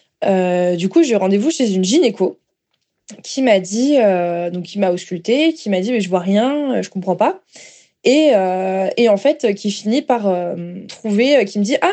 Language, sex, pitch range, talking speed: French, female, 190-260 Hz, 205 wpm